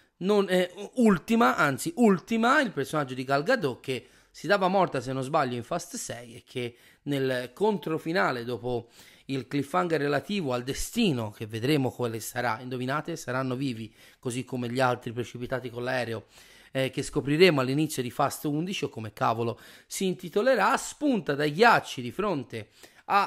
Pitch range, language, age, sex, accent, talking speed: 125-175 Hz, Italian, 30-49, male, native, 160 wpm